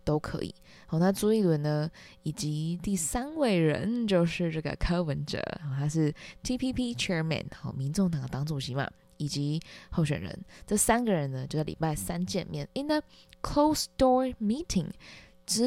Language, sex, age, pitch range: Chinese, female, 20-39, 155-215 Hz